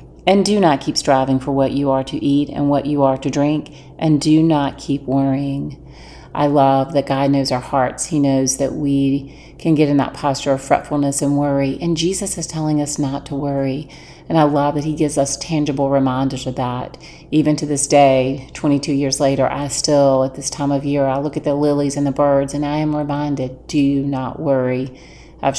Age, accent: 40-59, American